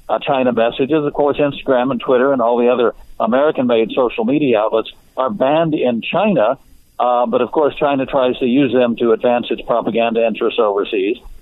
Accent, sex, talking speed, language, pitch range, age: American, male, 185 wpm, English, 115-140 Hz, 60-79